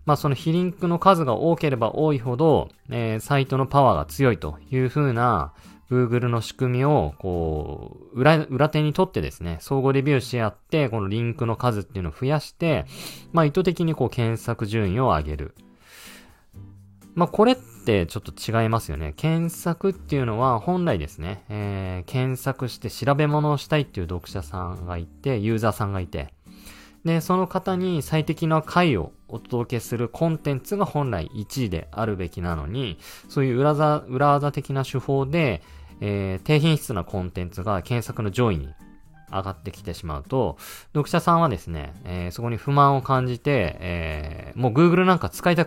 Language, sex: Japanese, male